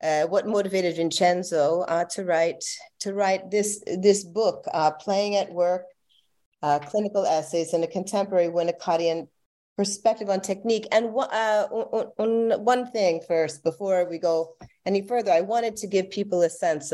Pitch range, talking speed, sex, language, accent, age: 160-200 Hz, 165 wpm, female, English, American, 40-59